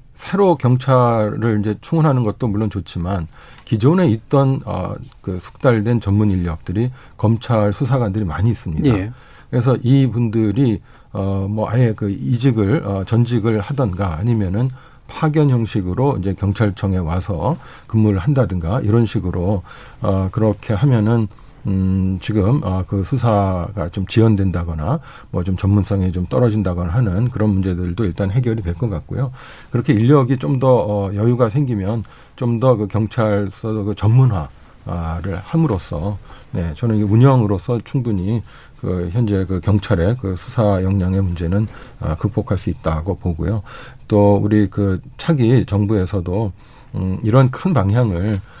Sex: male